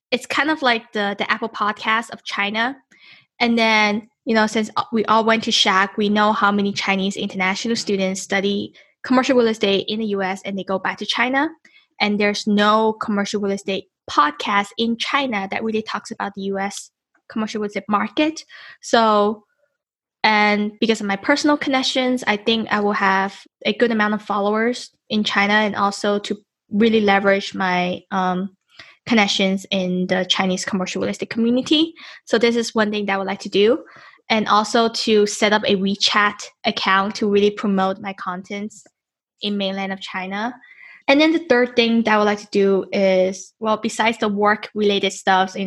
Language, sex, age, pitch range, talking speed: English, female, 10-29, 195-235 Hz, 180 wpm